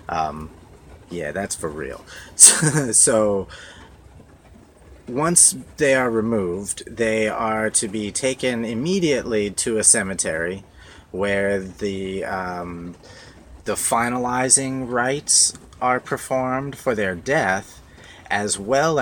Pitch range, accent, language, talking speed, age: 85-110 Hz, American, English, 100 wpm, 30-49